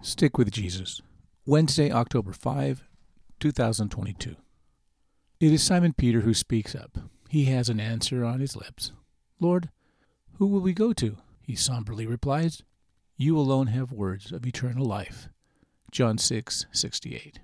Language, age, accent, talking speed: English, 50-69, American, 140 wpm